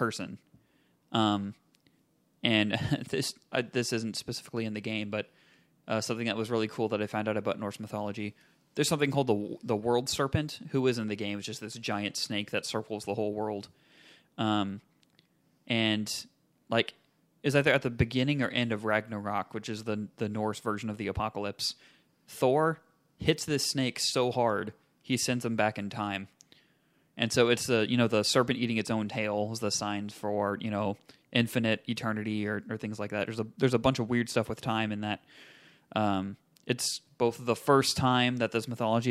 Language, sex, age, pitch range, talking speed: English, male, 20-39, 105-125 Hz, 195 wpm